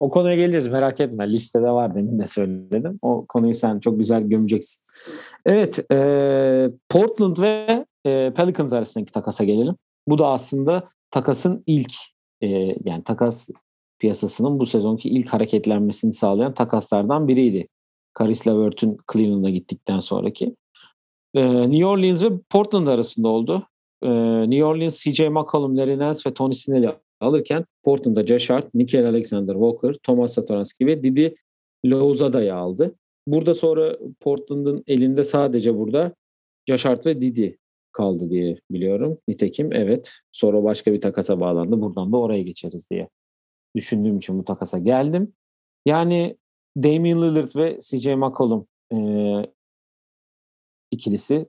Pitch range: 105-145 Hz